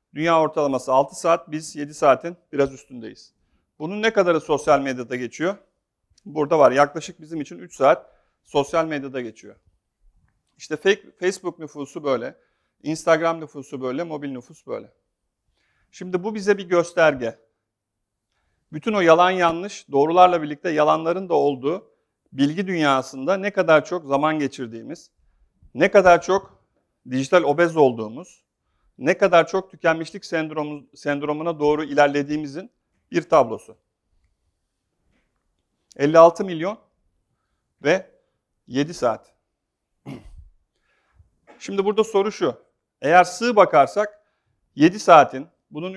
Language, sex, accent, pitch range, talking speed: Turkish, male, native, 140-180 Hz, 115 wpm